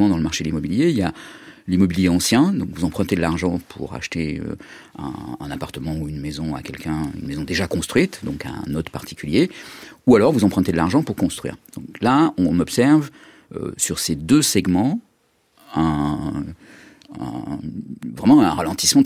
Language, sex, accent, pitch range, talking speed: French, male, French, 80-130 Hz, 170 wpm